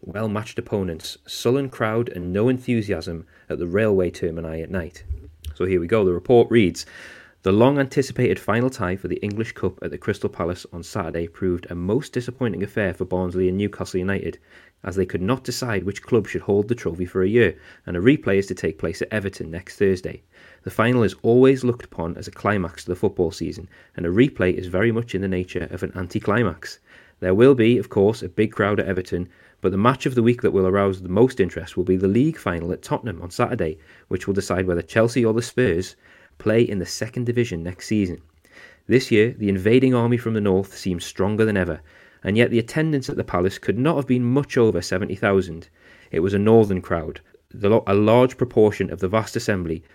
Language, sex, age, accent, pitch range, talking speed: English, male, 30-49, British, 90-120 Hz, 215 wpm